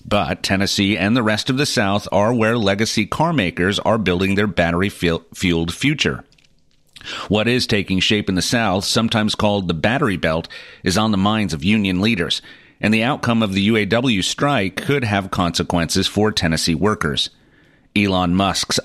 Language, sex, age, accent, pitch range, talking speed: English, male, 40-59, American, 90-110 Hz, 160 wpm